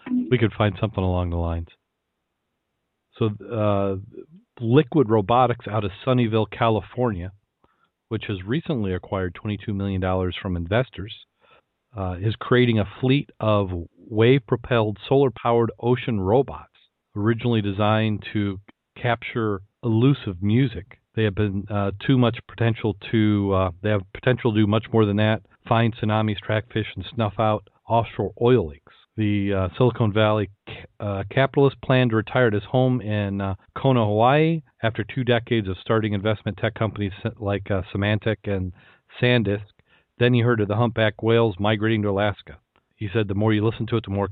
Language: English